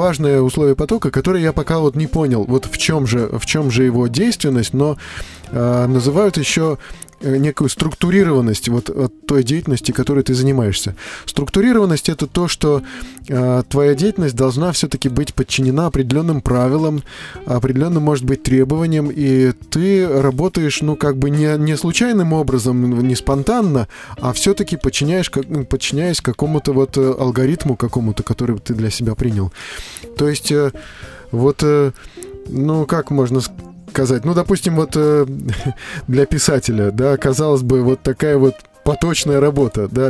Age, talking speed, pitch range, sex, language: 20-39, 140 wpm, 125-155 Hz, male, Russian